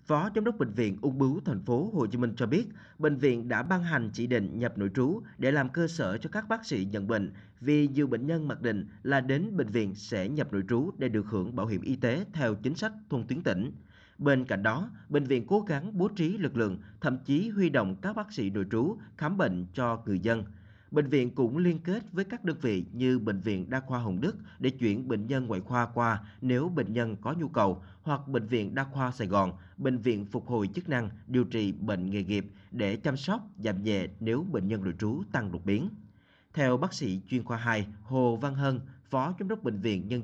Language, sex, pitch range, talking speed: Vietnamese, male, 105-145 Hz, 240 wpm